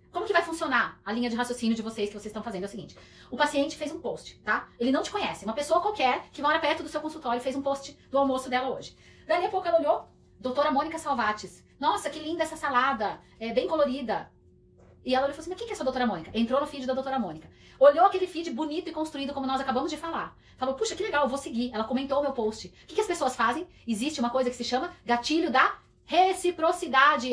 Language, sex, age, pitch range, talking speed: Portuguese, female, 30-49, 240-310 Hz, 250 wpm